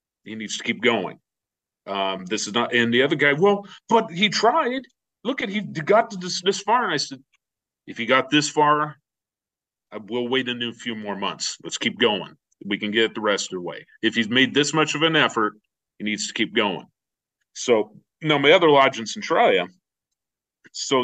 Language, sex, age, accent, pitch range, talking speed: English, male, 40-59, American, 115-140 Hz, 210 wpm